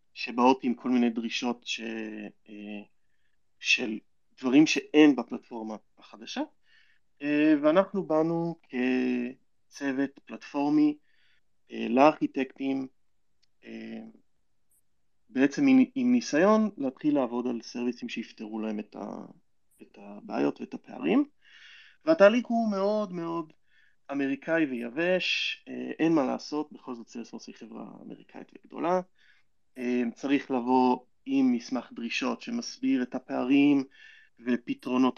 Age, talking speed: 30-49, 90 wpm